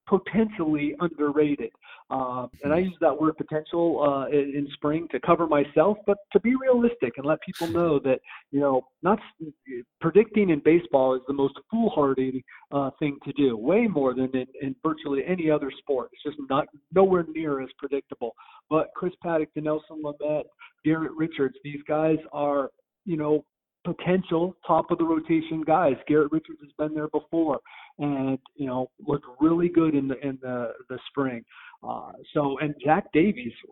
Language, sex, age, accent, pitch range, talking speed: English, male, 40-59, American, 140-170 Hz, 175 wpm